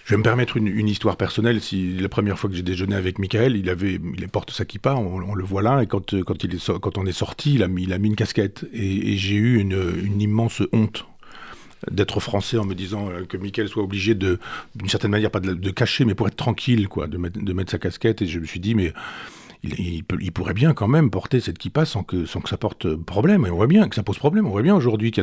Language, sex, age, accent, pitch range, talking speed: French, male, 40-59, French, 95-115 Hz, 275 wpm